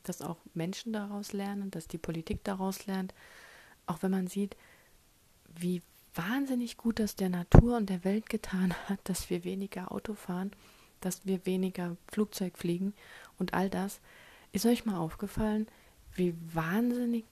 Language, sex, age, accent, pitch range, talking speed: German, female, 30-49, German, 180-225 Hz, 150 wpm